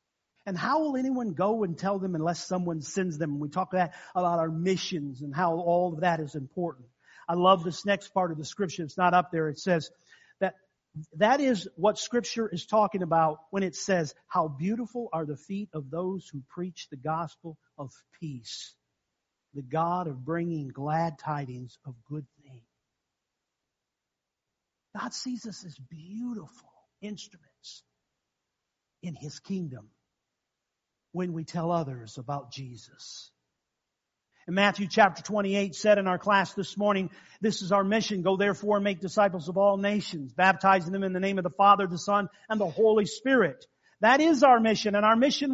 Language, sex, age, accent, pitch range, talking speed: English, male, 50-69, American, 165-215 Hz, 170 wpm